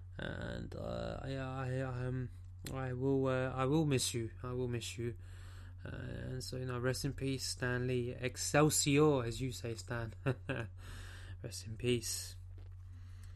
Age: 20-39